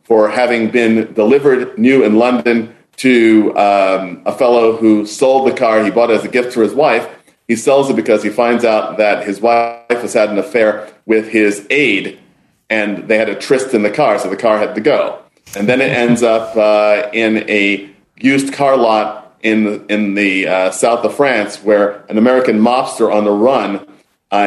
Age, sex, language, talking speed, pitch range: 40-59, male, English, 200 wpm, 105-125 Hz